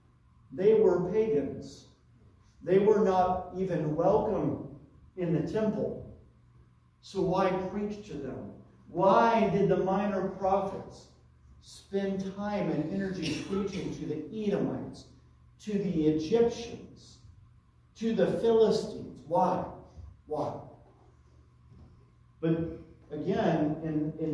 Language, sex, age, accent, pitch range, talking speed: English, male, 50-69, American, 140-190 Hz, 100 wpm